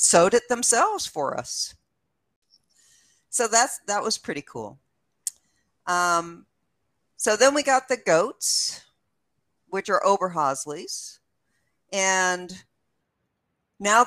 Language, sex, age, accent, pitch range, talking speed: English, female, 50-69, American, 160-205 Hz, 100 wpm